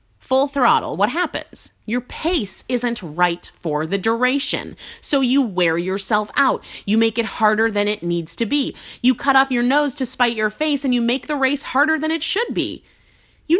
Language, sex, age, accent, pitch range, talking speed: English, female, 30-49, American, 185-280 Hz, 200 wpm